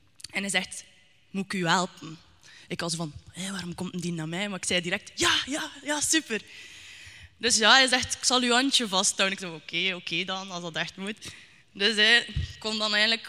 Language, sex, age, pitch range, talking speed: Dutch, female, 20-39, 190-240 Hz, 230 wpm